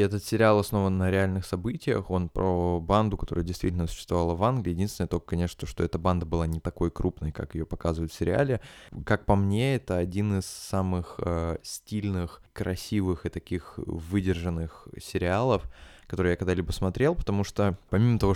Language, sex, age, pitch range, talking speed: Russian, male, 20-39, 85-100 Hz, 165 wpm